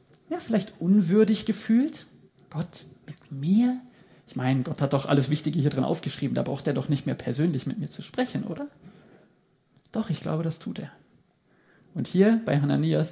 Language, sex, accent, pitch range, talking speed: German, male, German, 150-210 Hz, 180 wpm